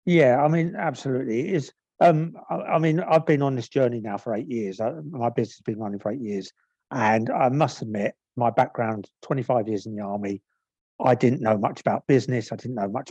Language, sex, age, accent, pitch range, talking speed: English, male, 50-69, British, 110-140 Hz, 215 wpm